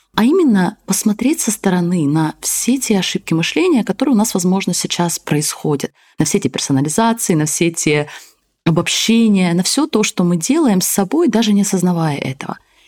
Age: 20-39